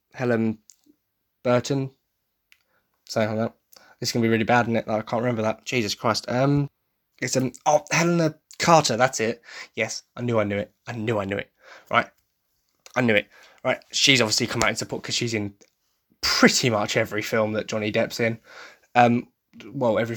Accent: British